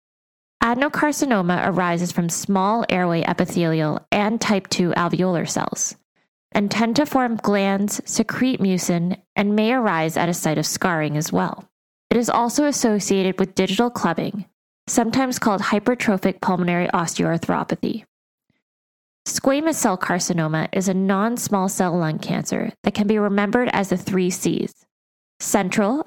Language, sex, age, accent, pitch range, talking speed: English, female, 20-39, American, 180-220 Hz, 135 wpm